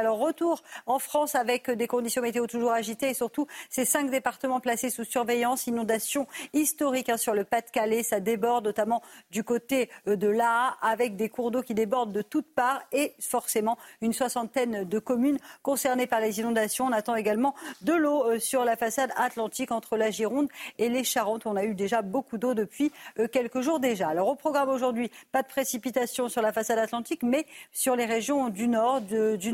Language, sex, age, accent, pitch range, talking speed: French, female, 50-69, French, 220-255 Hz, 185 wpm